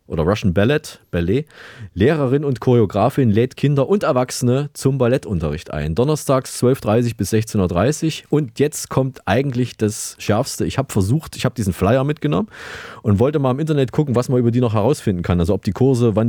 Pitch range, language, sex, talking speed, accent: 100-130 Hz, German, male, 190 wpm, German